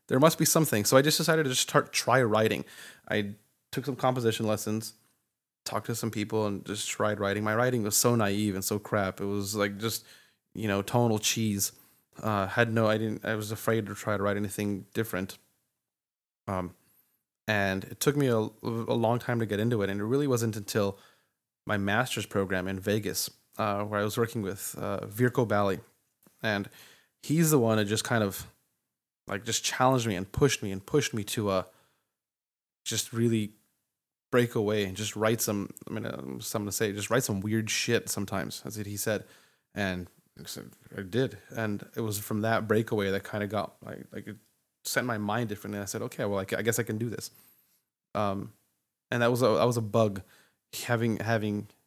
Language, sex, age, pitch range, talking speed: English, male, 20-39, 100-120 Hz, 200 wpm